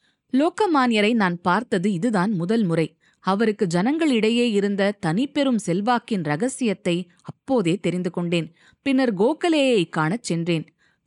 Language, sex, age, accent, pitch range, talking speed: Tamil, female, 20-39, native, 175-250 Hz, 105 wpm